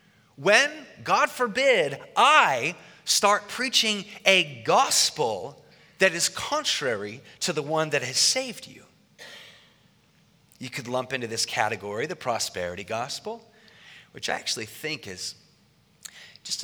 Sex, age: male, 30-49